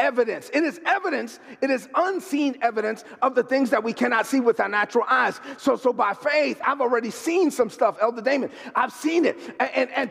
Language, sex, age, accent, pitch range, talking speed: English, male, 30-49, American, 250-310 Hz, 215 wpm